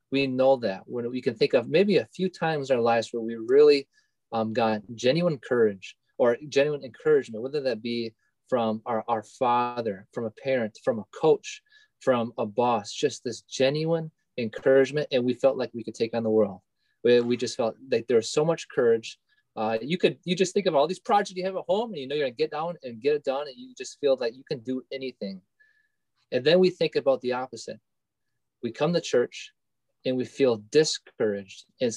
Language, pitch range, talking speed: English, 115-185 Hz, 220 wpm